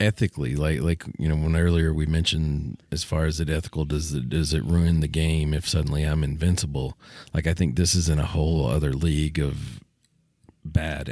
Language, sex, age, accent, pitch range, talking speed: English, male, 40-59, American, 80-100 Hz, 200 wpm